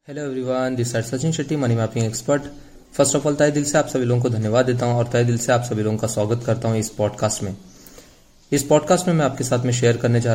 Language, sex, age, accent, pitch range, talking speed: Hindi, male, 20-39, native, 110-125 Hz, 240 wpm